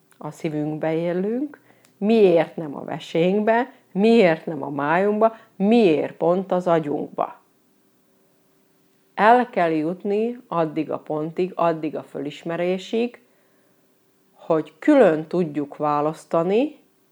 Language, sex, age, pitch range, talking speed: Hungarian, female, 40-59, 150-210 Hz, 100 wpm